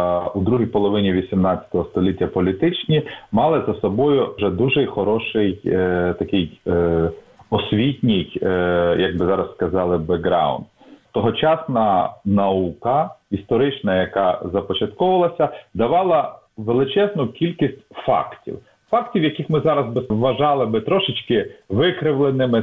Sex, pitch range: male, 110-175 Hz